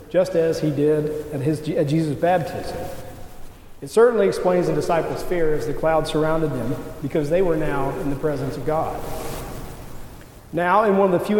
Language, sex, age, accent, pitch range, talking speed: English, male, 40-59, American, 150-185 Hz, 180 wpm